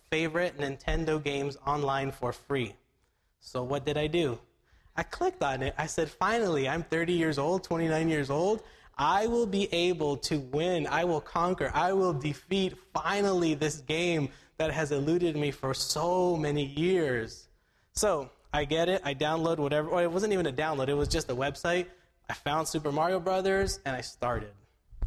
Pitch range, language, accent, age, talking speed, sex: 140-180 Hz, English, American, 20-39, 175 wpm, male